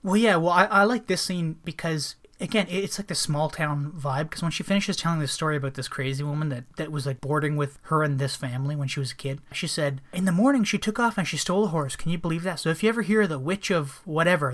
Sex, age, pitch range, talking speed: male, 20-39, 140-180 Hz, 280 wpm